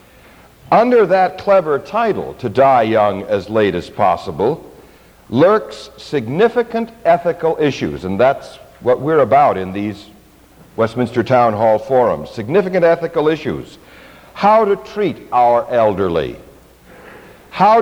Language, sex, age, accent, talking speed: English, male, 60-79, American, 120 wpm